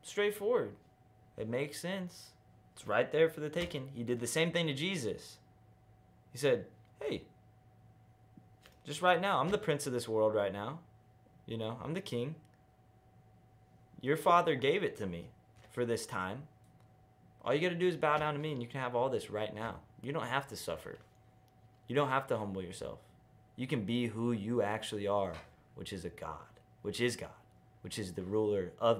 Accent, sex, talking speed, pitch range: American, male, 190 wpm, 110-160 Hz